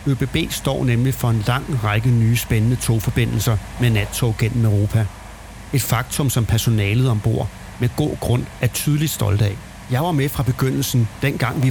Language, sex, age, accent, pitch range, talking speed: Danish, male, 40-59, native, 110-130 Hz, 170 wpm